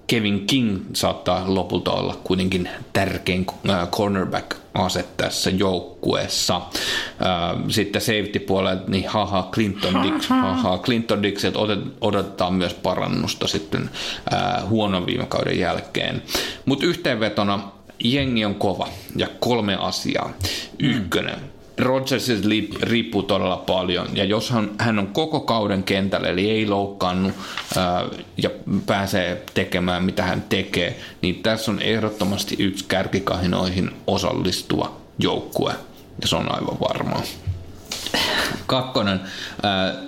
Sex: male